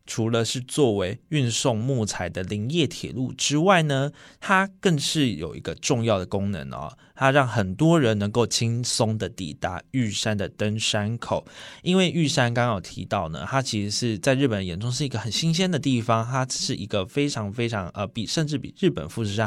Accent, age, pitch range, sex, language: native, 20-39, 105-145 Hz, male, Chinese